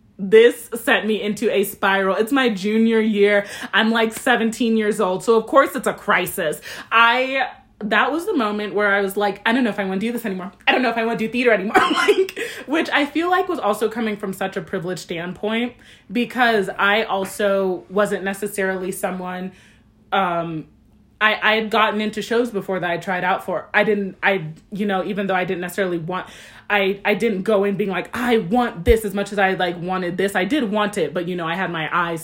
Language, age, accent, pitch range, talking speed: English, 20-39, American, 185-225 Hz, 225 wpm